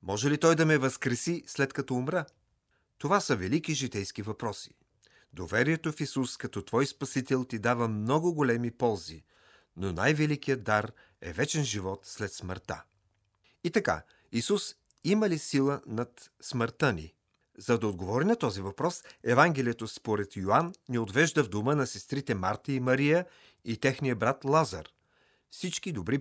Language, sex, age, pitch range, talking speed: Bulgarian, male, 40-59, 105-150 Hz, 150 wpm